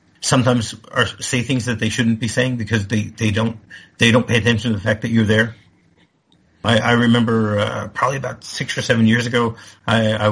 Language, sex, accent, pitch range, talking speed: English, male, American, 105-125 Hz, 210 wpm